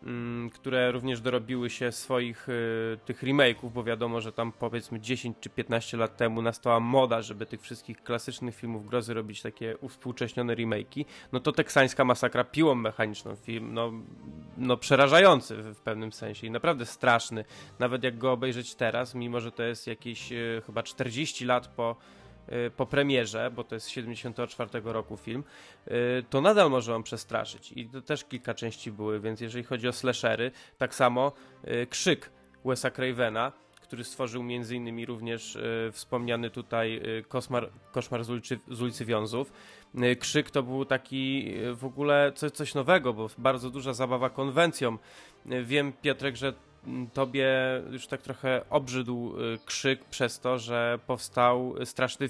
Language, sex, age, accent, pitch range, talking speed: Polish, male, 20-39, native, 115-130 Hz, 150 wpm